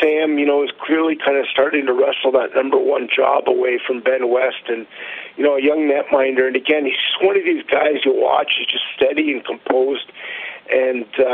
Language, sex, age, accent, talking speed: English, male, 40-59, American, 210 wpm